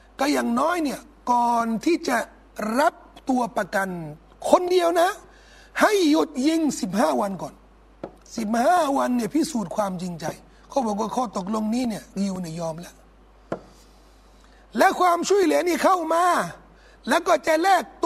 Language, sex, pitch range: Thai, male, 235-340 Hz